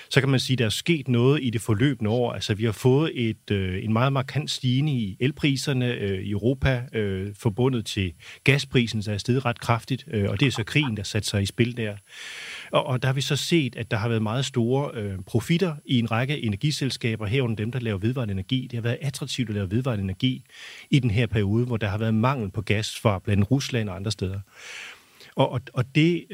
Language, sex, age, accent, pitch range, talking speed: Danish, male, 30-49, native, 110-140 Hz, 230 wpm